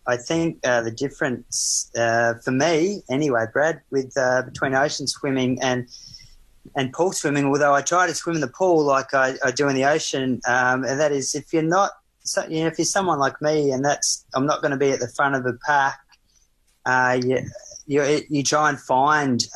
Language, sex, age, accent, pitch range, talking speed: English, male, 20-39, Australian, 130-150 Hz, 210 wpm